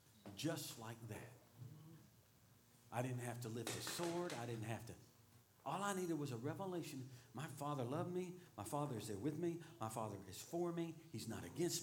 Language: English